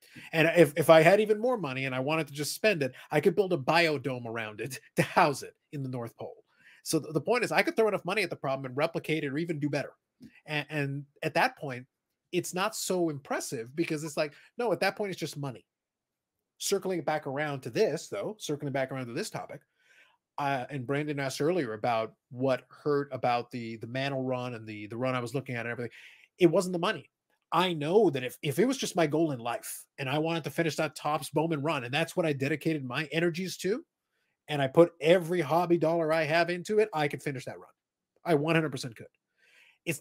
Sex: male